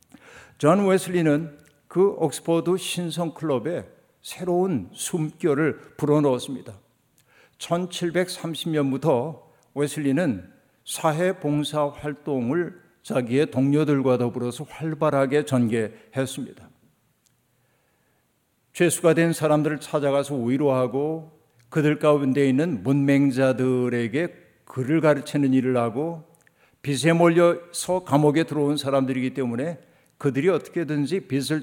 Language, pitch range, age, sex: Korean, 135-170 Hz, 50-69, male